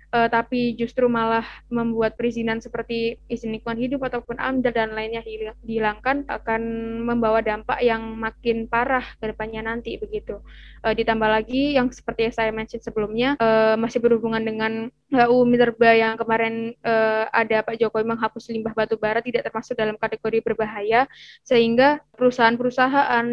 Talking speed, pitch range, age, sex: 145 wpm, 225-245 Hz, 20-39, female